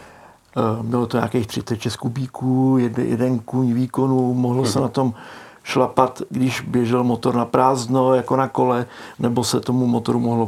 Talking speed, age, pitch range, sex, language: 150 wpm, 50-69, 120-135 Hz, male, Czech